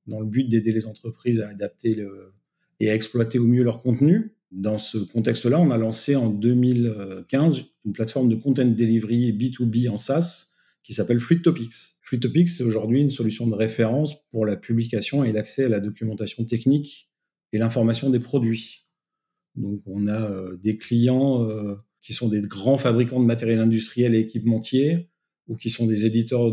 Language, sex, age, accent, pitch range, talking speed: French, male, 40-59, French, 110-135 Hz, 175 wpm